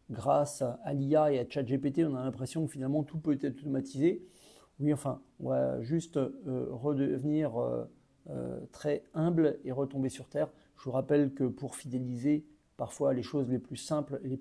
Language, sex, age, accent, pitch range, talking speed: French, male, 40-59, French, 130-160 Hz, 180 wpm